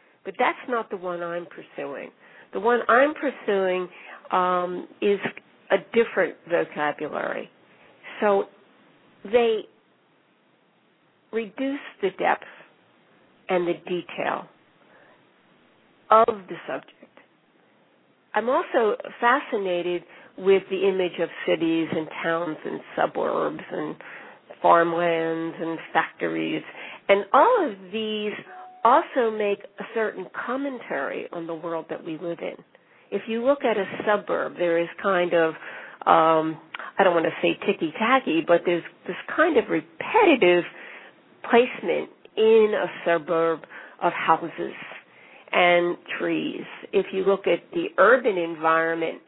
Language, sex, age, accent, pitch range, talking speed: English, female, 50-69, American, 170-240 Hz, 120 wpm